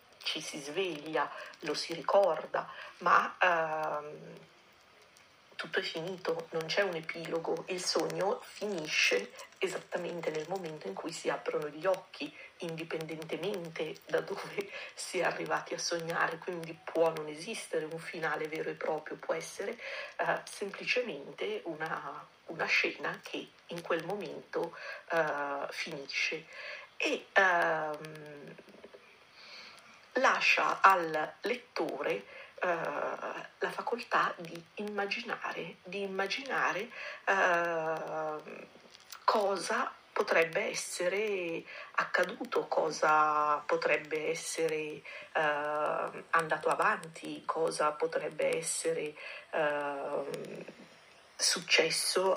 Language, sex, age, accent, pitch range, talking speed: Italian, female, 40-59, native, 155-200 Hz, 95 wpm